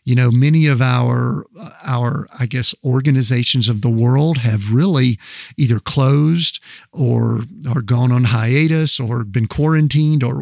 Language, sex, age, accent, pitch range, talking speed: English, male, 50-69, American, 120-150 Hz, 145 wpm